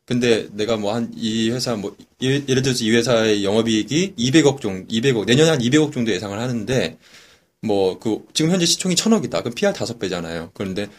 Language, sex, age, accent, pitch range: Korean, male, 20-39, native, 110-160 Hz